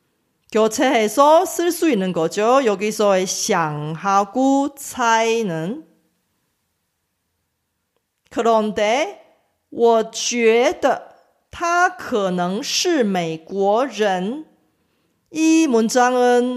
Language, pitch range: Korean, 195-275 Hz